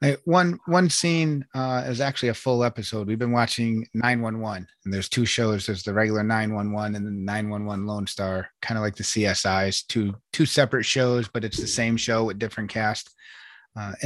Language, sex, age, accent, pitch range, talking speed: English, male, 30-49, American, 110-140 Hz, 215 wpm